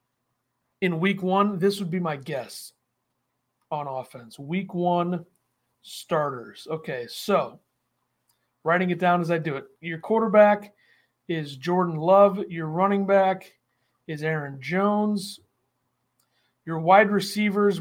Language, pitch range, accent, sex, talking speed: English, 160-200 Hz, American, male, 120 wpm